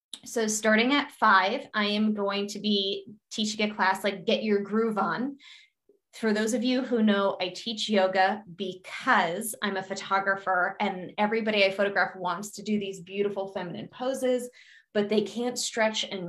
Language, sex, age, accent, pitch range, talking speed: English, female, 20-39, American, 195-235 Hz, 170 wpm